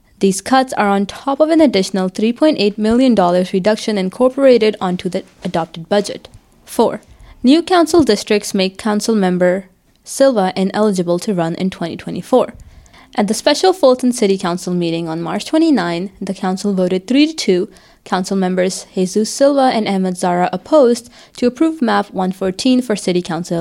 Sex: female